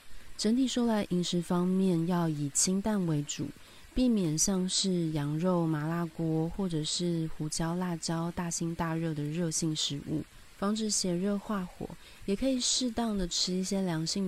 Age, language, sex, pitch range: 30-49, Chinese, female, 160-185 Hz